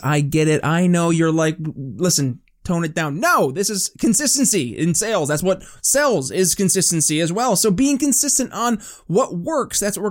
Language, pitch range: English, 155-200 Hz